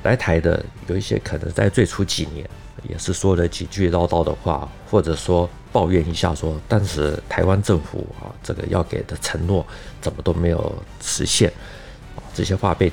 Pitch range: 85-105 Hz